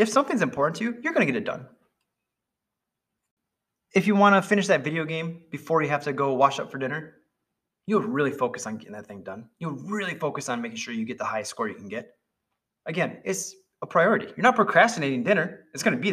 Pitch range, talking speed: 145-210 Hz, 230 wpm